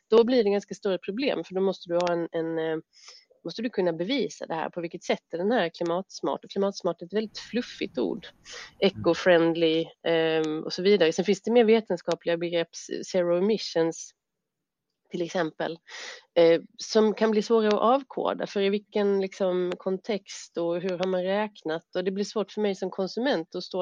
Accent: native